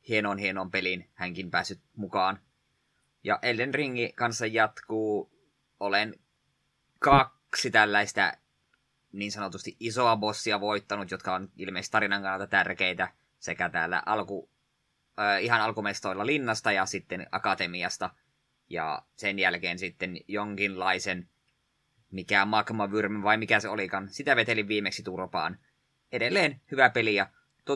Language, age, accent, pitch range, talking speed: Finnish, 20-39, native, 95-115 Hz, 115 wpm